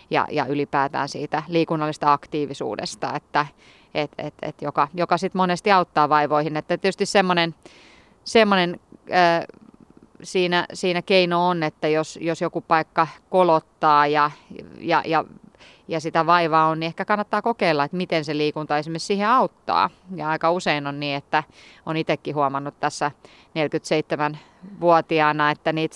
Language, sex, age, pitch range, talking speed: Finnish, female, 30-49, 150-175 Hz, 140 wpm